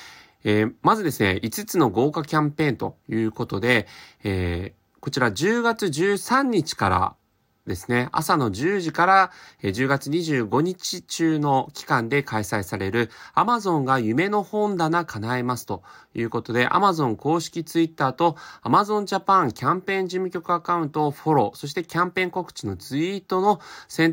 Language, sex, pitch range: Japanese, male, 115-175 Hz